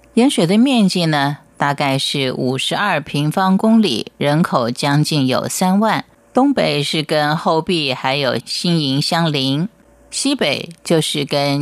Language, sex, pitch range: Chinese, female, 145-195 Hz